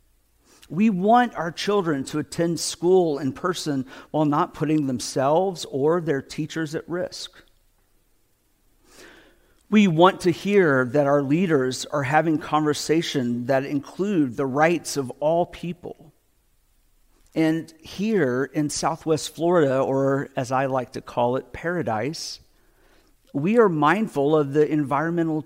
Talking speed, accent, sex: 125 wpm, American, male